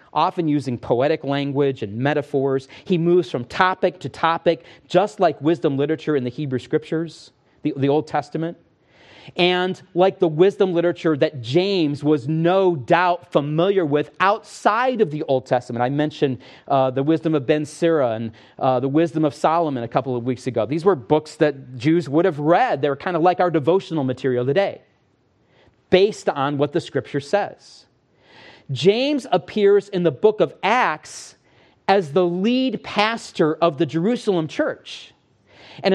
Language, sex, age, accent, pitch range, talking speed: English, male, 40-59, American, 150-205 Hz, 165 wpm